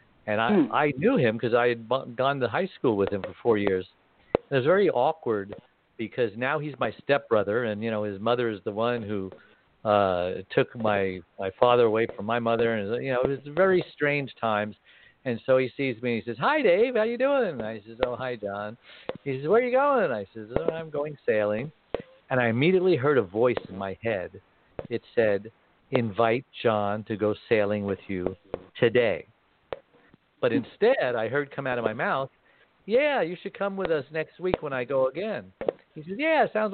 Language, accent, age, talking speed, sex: English, American, 60-79, 205 wpm, male